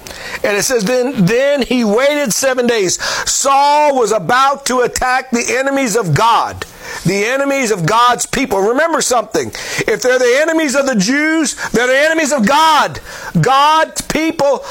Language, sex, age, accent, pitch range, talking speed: English, male, 60-79, American, 250-310 Hz, 160 wpm